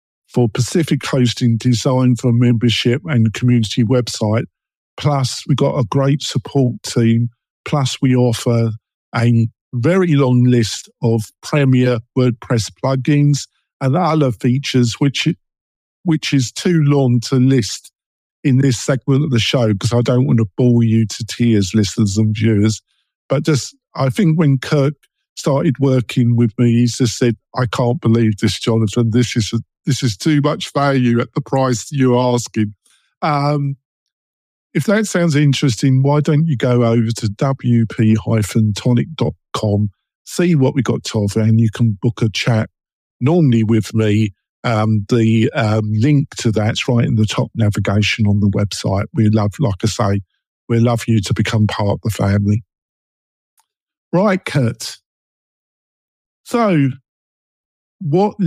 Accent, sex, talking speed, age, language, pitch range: British, male, 150 wpm, 50-69, English, 110-140 Hz